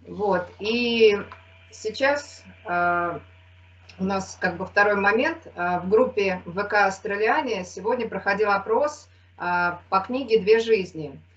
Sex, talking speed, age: female, 105 wpm, 30-49